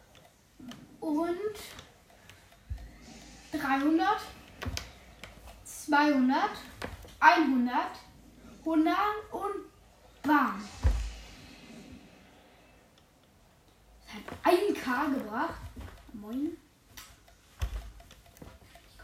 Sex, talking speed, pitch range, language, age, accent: female, 40 wpm, 230-290 Hz, German, 10-29, German